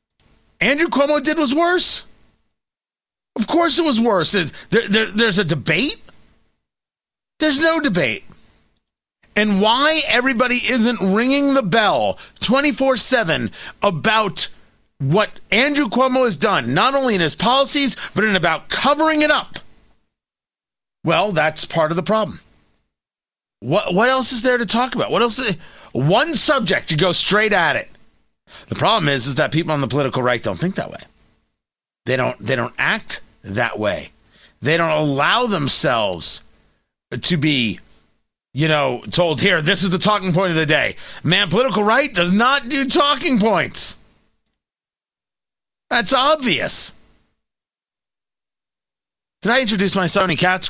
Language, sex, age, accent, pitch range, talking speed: English, male, 30-49, American, 160-260 Hz, 145 wpm